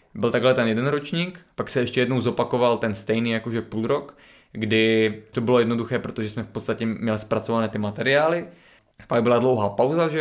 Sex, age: male, 20-39